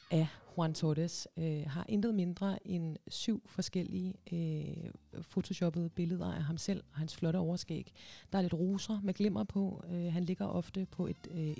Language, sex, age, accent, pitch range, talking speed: Danish, female, 30-49, native, 145-195 Hz, 175 wpm